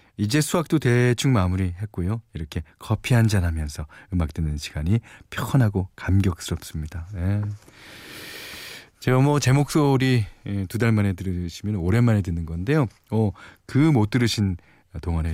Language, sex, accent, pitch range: Korean, male, native, 95-145 Hz